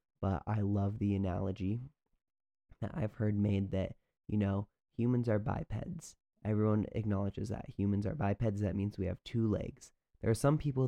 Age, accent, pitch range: 20-39, American, 100-110 Hz